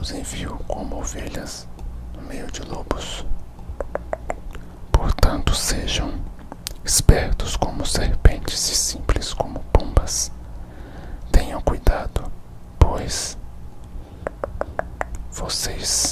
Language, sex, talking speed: Portuguese, male, 80 wpm